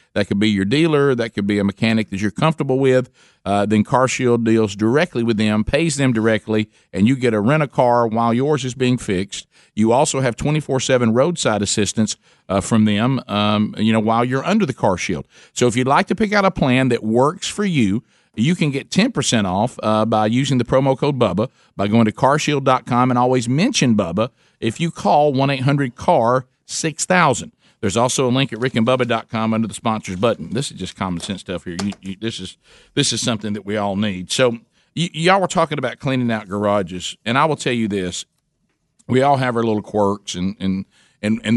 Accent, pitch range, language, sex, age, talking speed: American, 100-130 Hz, English, male, 50-69, 205 wpm